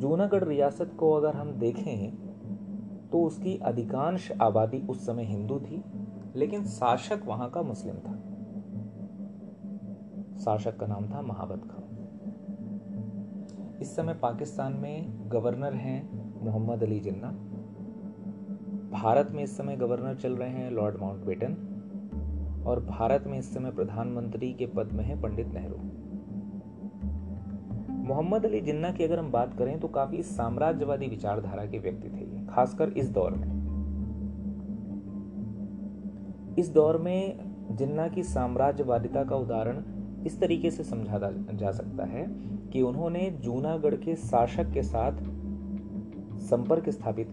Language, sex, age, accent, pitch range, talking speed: Hindi, male, 30-49, native, 100-165 Hz, 125 wpm